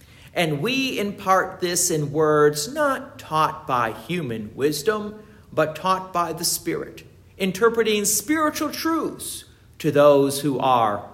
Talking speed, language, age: 125 wpm, English, 50-69